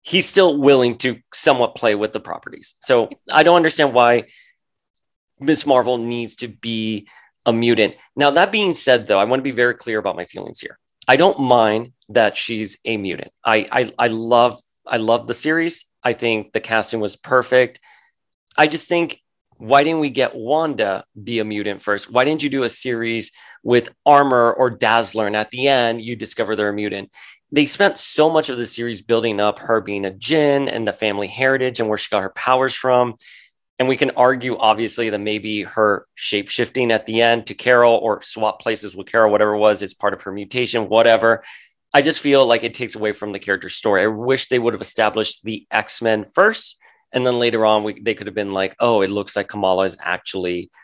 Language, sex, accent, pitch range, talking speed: English, male, American, 105-130 Hz, 205 wpm